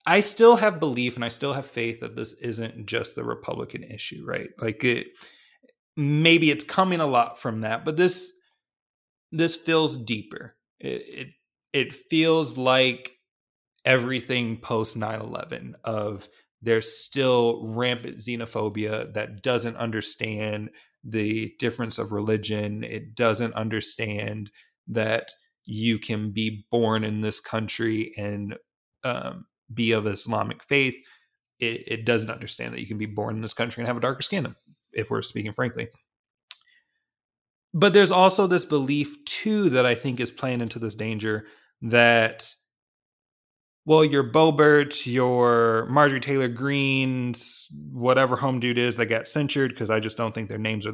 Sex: male